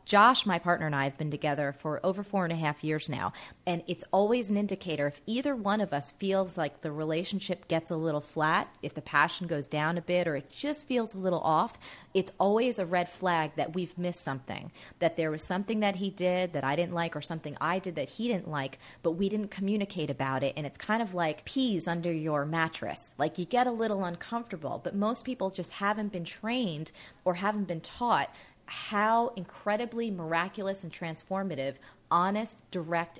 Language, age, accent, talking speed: English, 30-49, American, 210 wpm